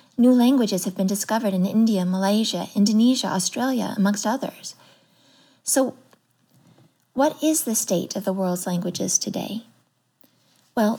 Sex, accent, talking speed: female, American, 125 wpm